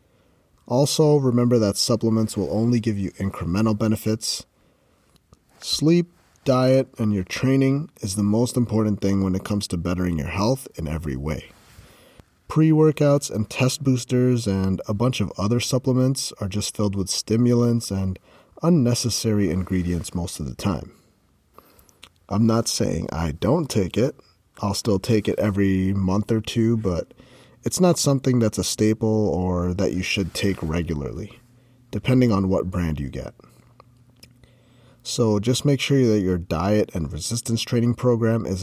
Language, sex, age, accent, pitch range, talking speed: English, male, 30-49, American, 95-125 Hz, 150 wpm